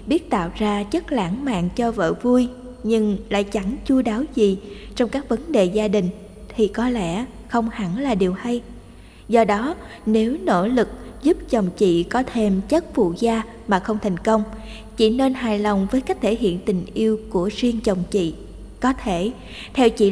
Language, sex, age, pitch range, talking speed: Vietnamese, female, 20-39, 200-245 Hz, 190 wpm